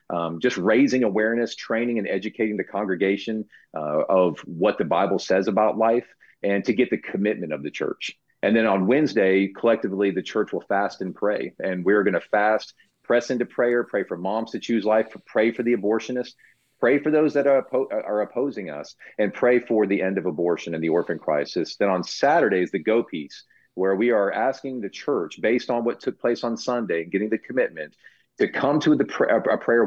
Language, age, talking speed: English, 40-59, 205 wpm